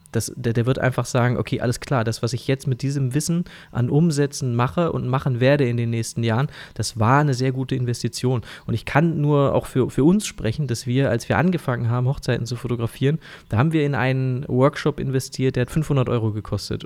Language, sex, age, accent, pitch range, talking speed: German, male, 20-39, German, 115-135 Hz, 220 wpm